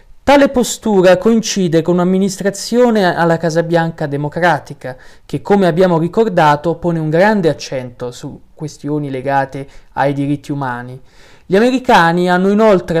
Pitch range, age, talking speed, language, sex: 150-195 Hz, 20-39, 125 wpm, Italian, male